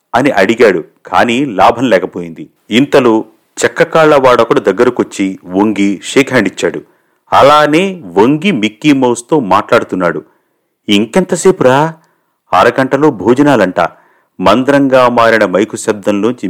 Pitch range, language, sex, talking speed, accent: 105-150 Hz, Telugu, male, 90 wpm, native